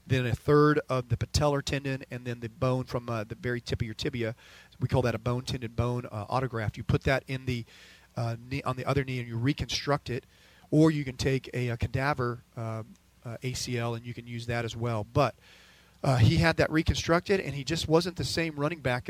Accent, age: American, 40-59